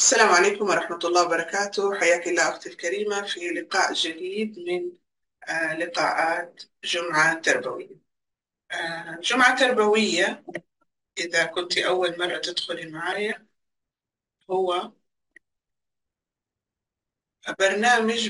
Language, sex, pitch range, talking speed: Arabic, female, 175-250 Hz, 85 wpm